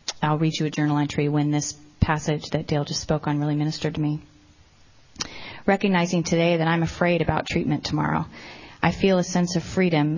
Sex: female